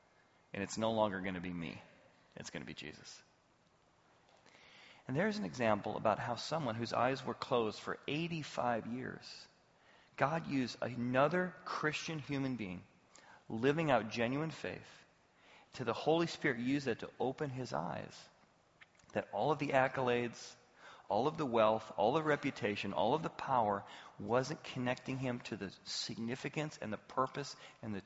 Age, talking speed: 40-59, 160 wpm